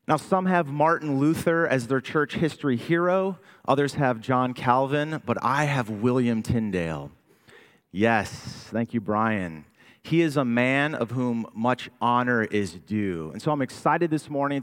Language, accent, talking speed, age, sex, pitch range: English, American, 160 wpm, 30-49, male, 105-140 Hz